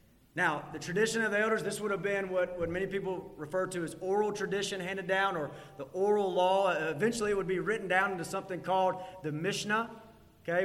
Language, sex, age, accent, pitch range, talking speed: English, male, 30-49, American, 180-235 Hz, 210 wpm